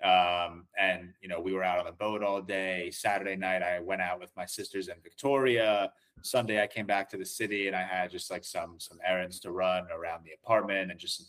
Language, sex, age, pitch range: English, male, 30-49, 90-105 Hz